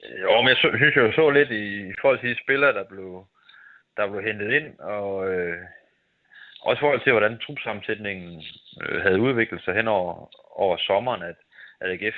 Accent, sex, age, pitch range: native, male, 30-49, 90-115 Hz